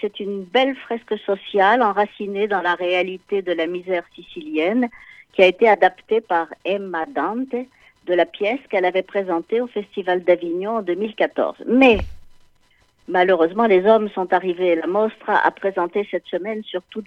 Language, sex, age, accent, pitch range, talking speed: French, female, 60-79, French, 180-240 Hz, 155 wpm